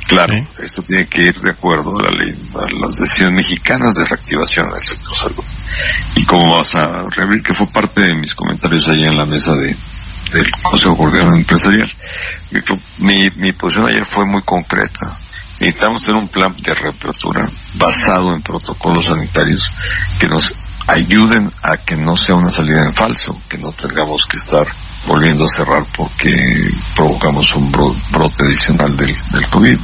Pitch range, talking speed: 80-95 Hz, 170 wpm